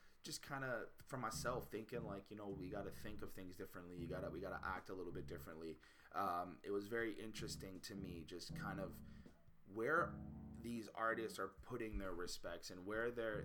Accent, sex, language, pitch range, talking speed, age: American, male, English, 90-110 Hz, 205 wpm, 20-39